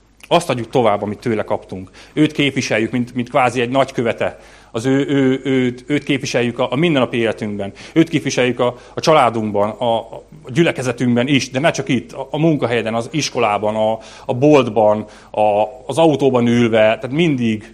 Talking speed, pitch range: 175 wpm, 115-140 Hz